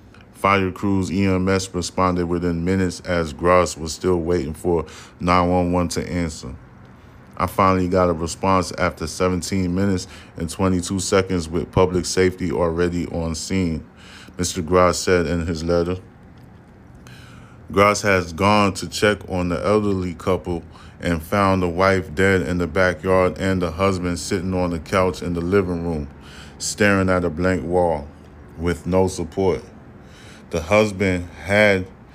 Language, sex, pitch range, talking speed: English, male, 85-100 Hz, 145 wpm